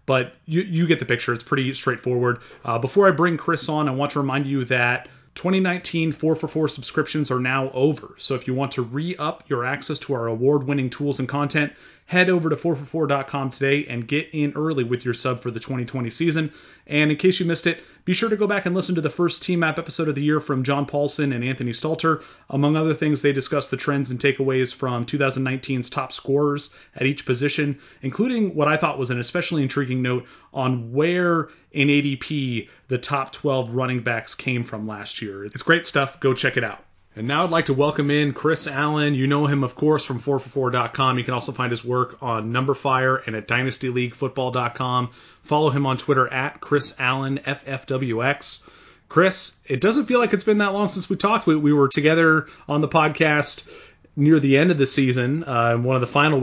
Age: 30-49